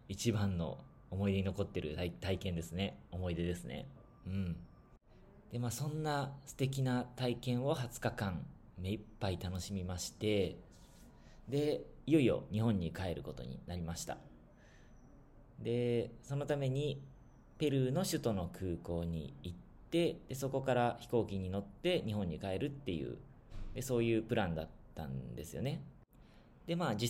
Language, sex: Japanese, male